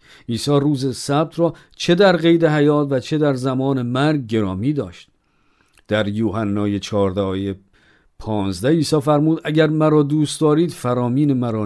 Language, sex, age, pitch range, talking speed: Persian, male, 50-69, 110-150 Hz, 150 wpm